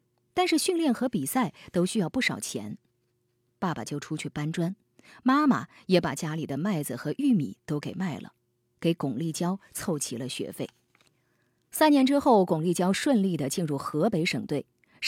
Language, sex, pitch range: Chinese, female, 145-215 Hz